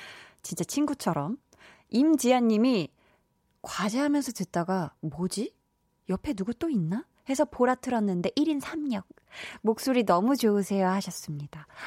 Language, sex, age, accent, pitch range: Korean, female, 20-39, native, 175-255 Hz